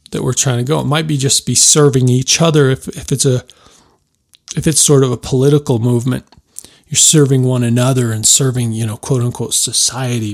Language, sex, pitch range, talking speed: English, male, 120-140 Hz, 205 wpm